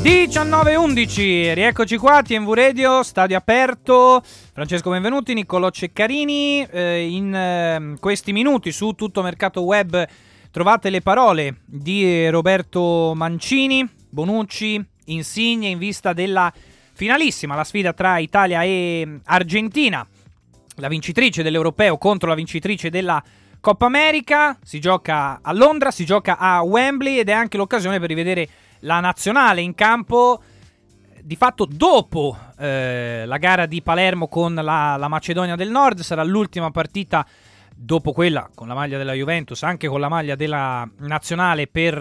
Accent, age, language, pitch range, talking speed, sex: native, 20-39, Italian, 160-215 Hz, 140 wpm, male